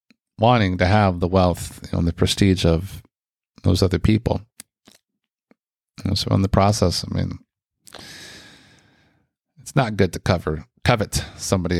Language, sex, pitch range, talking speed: English, male, 95-115 Hz, 120 wpm